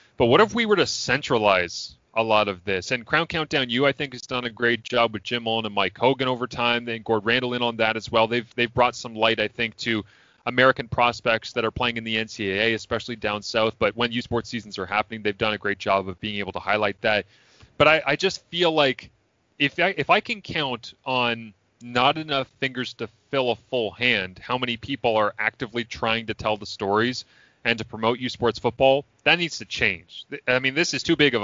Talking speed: 235 wpm